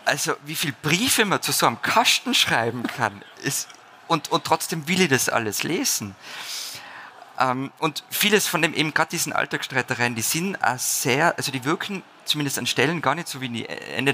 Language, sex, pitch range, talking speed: German, male, 110-140 Hz, 185 wpm